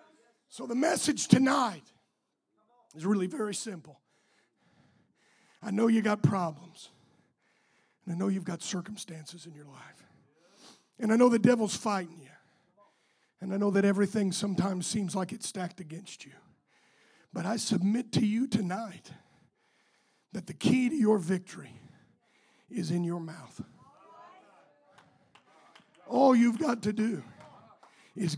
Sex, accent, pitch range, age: male, American, 175-225 Hz, 50-69